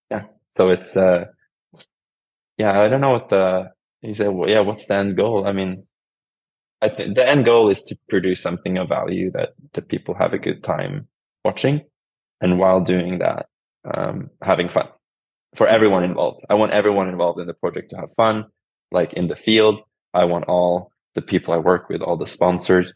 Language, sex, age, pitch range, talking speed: English, male, 20-39, 85-100 Hz, 190 wpm